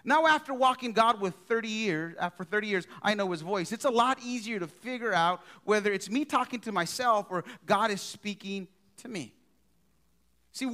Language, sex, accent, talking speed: English, male, American, 190 wpm